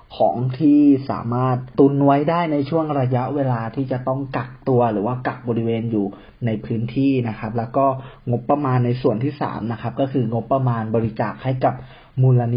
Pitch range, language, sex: 115-145 Hz, Thai, male